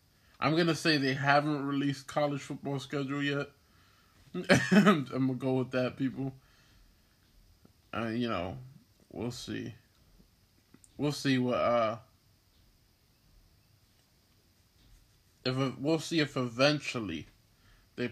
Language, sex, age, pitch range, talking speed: English, male, 20-39, 100-135 Hz, 105 wpm